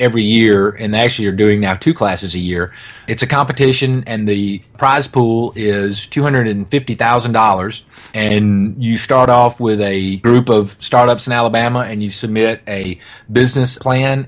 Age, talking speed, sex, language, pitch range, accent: 30-49, 155 wpm, male, English, 105-125 Hz, American